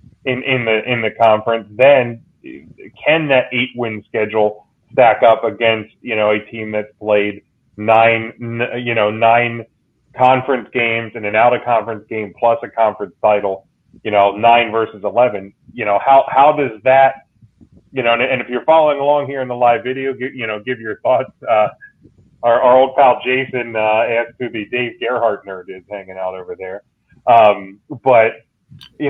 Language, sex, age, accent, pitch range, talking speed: English, male, 30-49, American, 105-125 Hz, 180 wpm